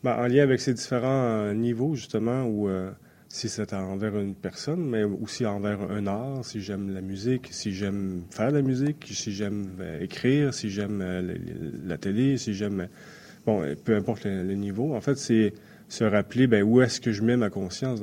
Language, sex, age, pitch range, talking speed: French, male, 30-49, 100-125 Hz, 190 wpm